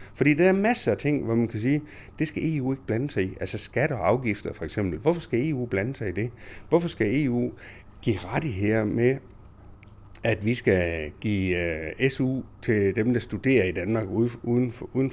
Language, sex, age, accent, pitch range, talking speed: Danish, male, 60-79, native, 100-130 Hz, 200 wpm